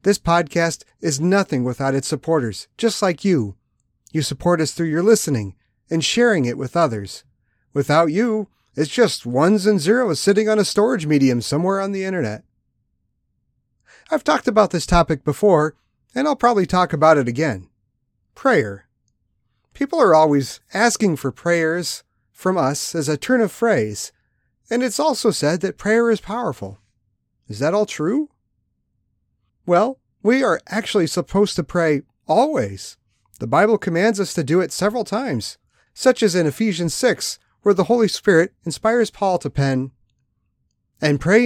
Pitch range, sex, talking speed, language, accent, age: 135-205 Hz, male, 155 wpm, English, American, 40-59